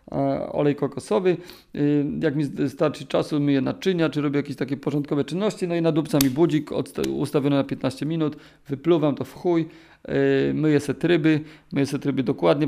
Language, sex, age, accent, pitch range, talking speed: Polish, male, 40-59, native, 140-165 Hz, 165 wpm